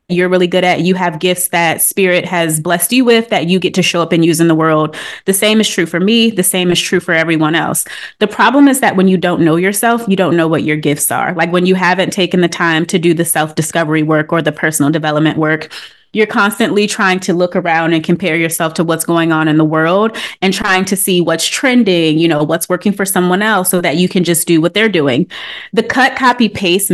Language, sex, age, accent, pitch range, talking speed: English, female, 20-39, American, 165-215 Hz, 250 wpm